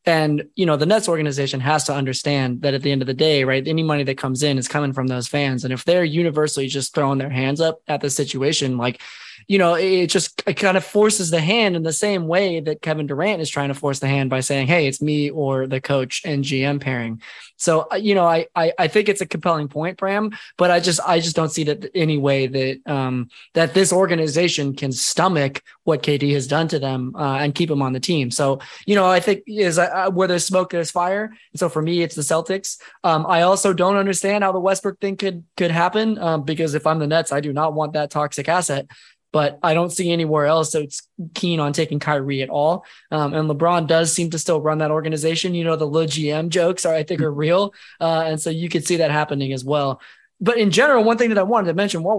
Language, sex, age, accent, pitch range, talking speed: English, male, 20-39, American, 145-180 Hz, 250 wpm